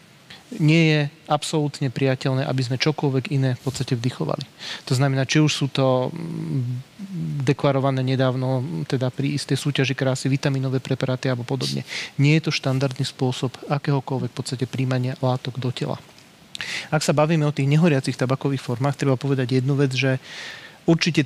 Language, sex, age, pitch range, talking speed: Slovak, male, 40-59, 130-145 Hz, 150 wpm